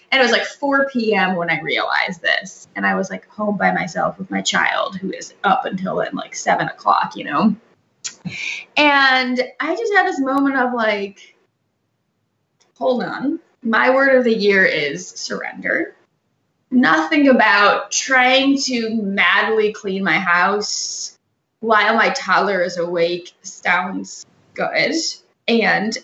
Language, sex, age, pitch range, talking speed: English, female, 20-39, 190-255 Hz, 145 wpm